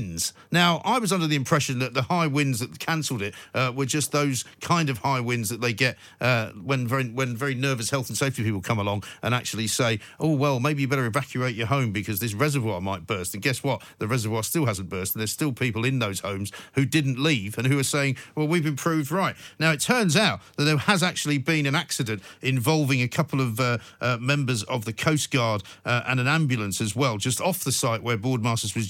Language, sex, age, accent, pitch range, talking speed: English, male, 50-69, British, 120-155 Hz, 235 wpm